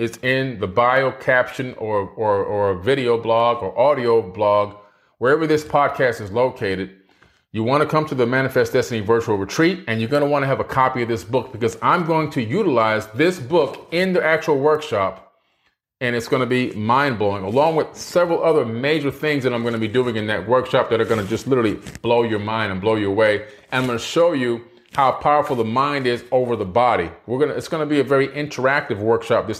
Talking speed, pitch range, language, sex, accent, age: 225 wpm, 115-145 Hz, English, male, American, 30-49